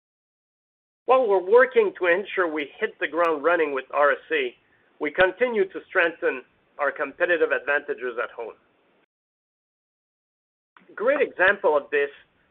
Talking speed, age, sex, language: 125 wpm, 40-59, male, English